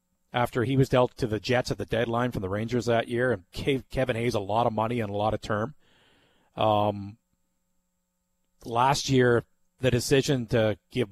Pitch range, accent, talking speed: 105-130 Hz, American, 190 wpm